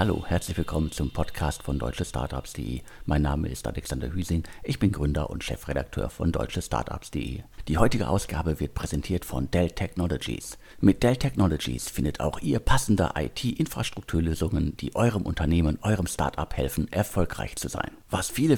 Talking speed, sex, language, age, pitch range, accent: 150 wpm, male, German, 50-69, 75-100 Hz, German